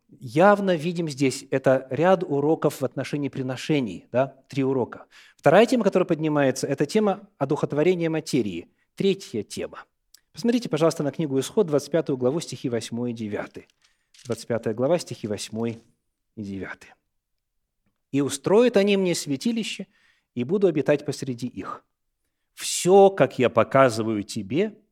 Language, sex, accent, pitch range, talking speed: Russian, male, native, 125-180 Hz, 130 wpm